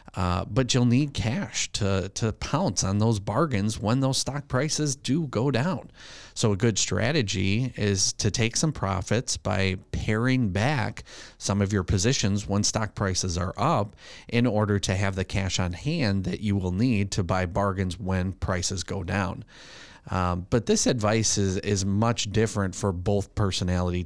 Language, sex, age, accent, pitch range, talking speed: English, male, 30-49, American, 95-115 Hz, 170 wpm